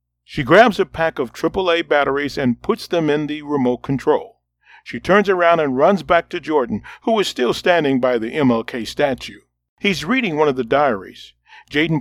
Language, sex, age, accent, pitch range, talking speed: English, male, 40-59, American, 120-170 Hz, 185 wpm